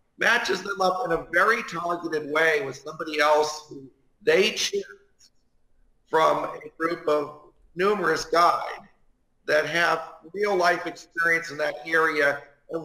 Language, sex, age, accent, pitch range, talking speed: English, male, 50-69, American, 145-180 Hz, 135 wpm